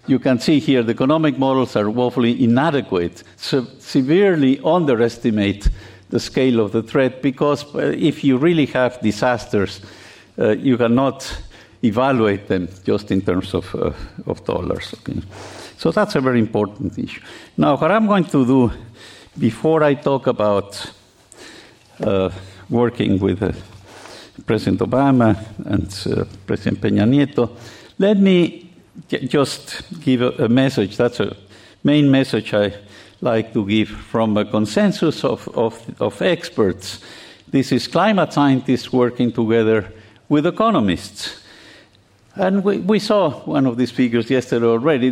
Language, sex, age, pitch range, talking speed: English, male, 50-69, 110-150 Hz, 135 wpm